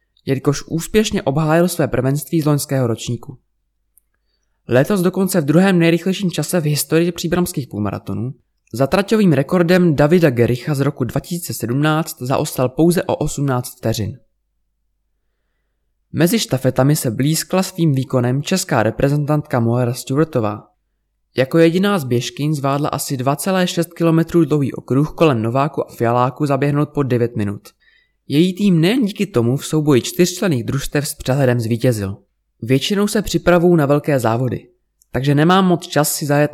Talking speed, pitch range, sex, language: 135 wpm, 125-170 Hz, male, Czech